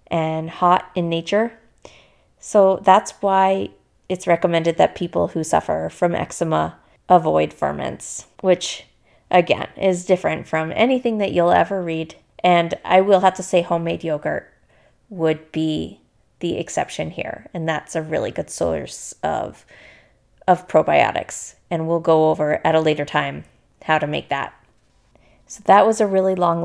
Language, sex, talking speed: English, female, 150 wpm